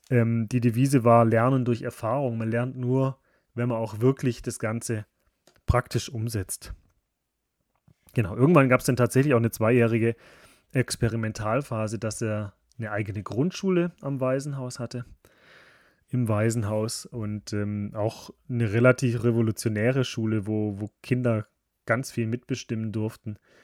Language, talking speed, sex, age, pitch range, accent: German, 130 wpm, male, 30-49, 110-125 Hz, German